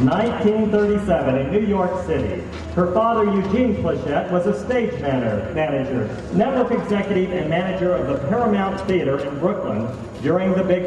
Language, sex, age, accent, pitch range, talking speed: English, male, 40-59, American, 155-205 Hz, 145 wpm